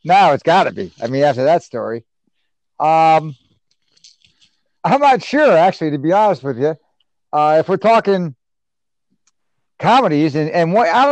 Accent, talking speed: American, 160 wpm